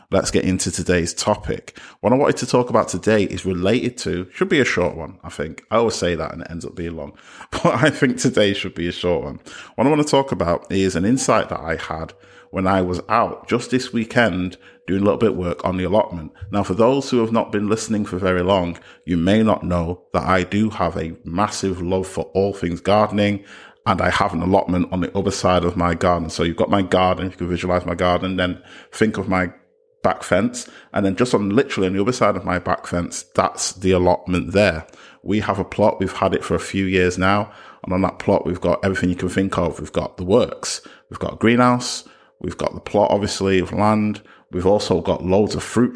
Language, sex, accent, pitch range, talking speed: English, male, British, 90-105 Hz, 240 wpm